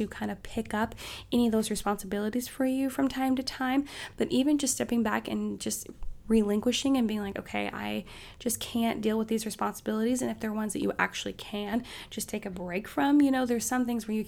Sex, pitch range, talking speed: female, 205-260 Hz, 225 wpm